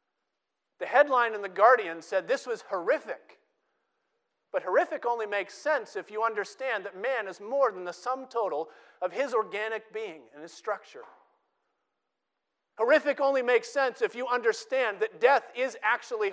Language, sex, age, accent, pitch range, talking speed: English, male, 40-59, American, 190-300 Hz, 160 wpm